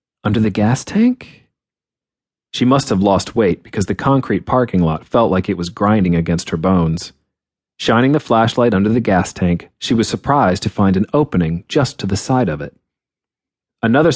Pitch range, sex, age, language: 95-125 Hz, male, 40-59, English